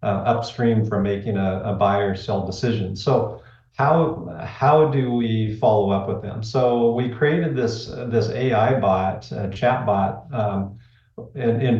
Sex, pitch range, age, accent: male, 105-120 Hz, 50-69, American